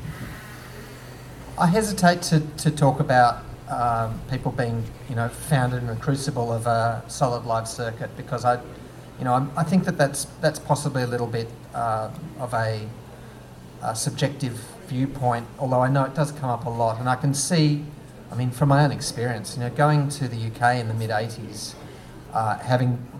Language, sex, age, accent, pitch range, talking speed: English, male, 40-59, Australian, 115-140 Hz, 185 wpm